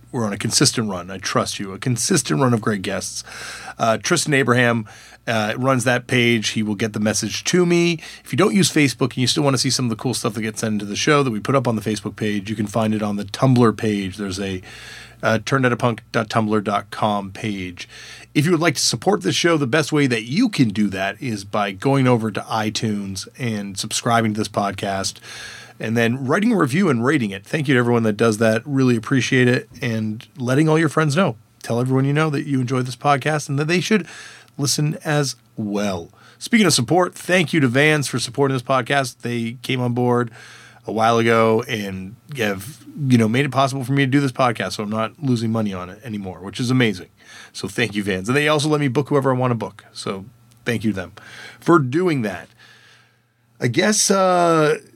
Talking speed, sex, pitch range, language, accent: 225 wpm, male, 110-140 Hz, English, American